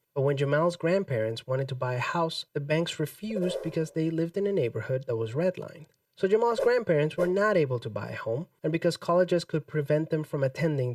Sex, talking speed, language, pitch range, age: male, 215 wpm, English, 130-170 Hz, 30-49